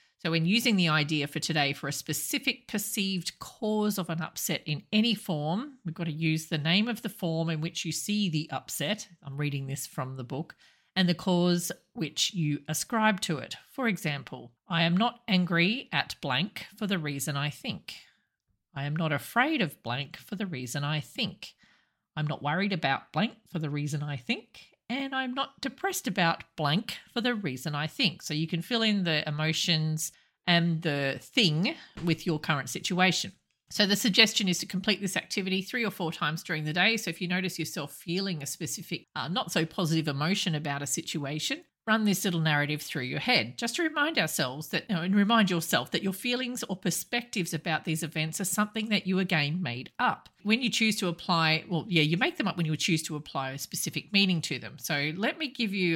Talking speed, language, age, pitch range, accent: 205 wpm, English, 40-59, 155-205 Hz, Australian